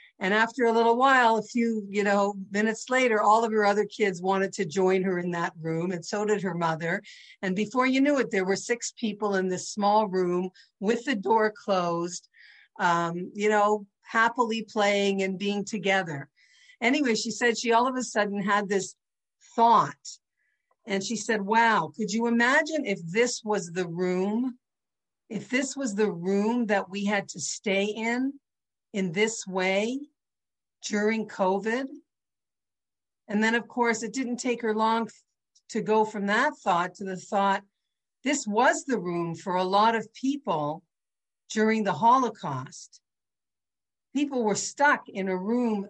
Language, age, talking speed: English, 50-69, 165 wpm